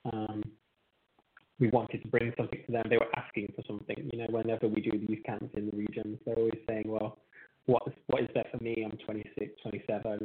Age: 20-39